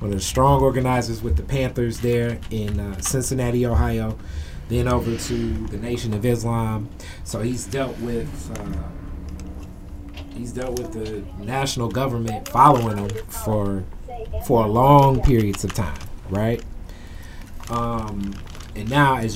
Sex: male